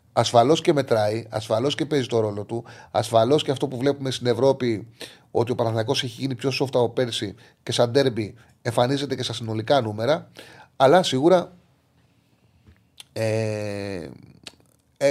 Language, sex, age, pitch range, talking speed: Greek, male, 30-49, 110-130 Hz, 145 wpm